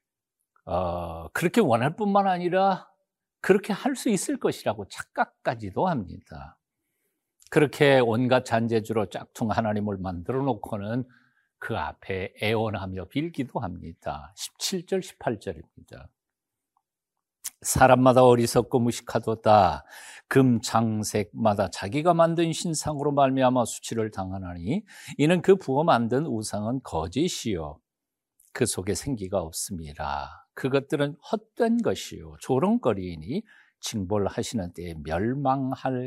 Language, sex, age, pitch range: Korean, male, 50-69, 105-165 Hz